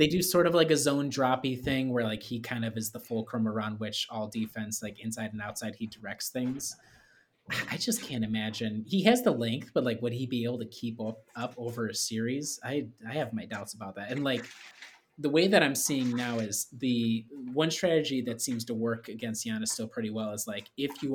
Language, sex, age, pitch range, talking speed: English, male, 20-39, 110-135 Hz, 230 wpm